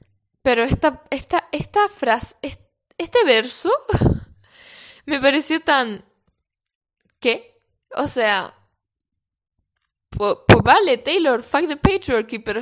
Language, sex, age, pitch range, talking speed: Spanish, female, 10-29, 195-300 Hz, 100 wpm